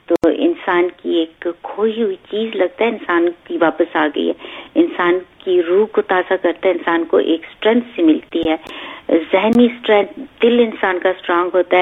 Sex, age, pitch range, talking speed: female, 50-69, 175-220 Hz, 175 wpm